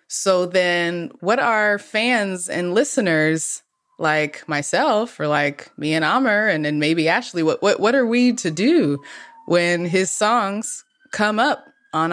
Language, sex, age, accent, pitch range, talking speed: English, female, 20-39, American, 145-185 Hz, 155 wpm